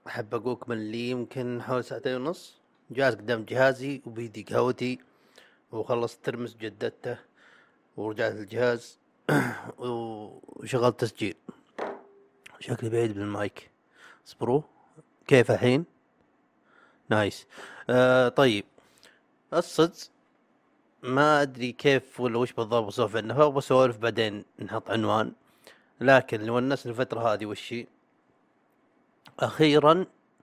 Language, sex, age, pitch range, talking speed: Arabic, male, 30-49, 115-140 Hz, 95 wpm